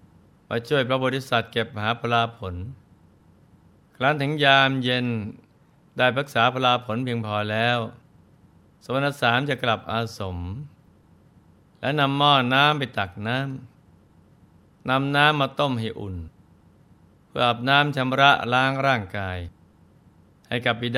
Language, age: Thai, 60-79